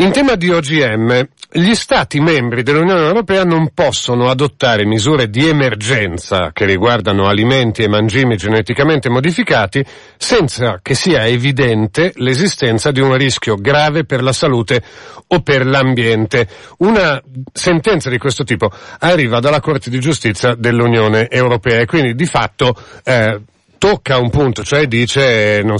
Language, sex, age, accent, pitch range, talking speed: Italian, male, 40-59, native, 105-135 Hz, 140 wpm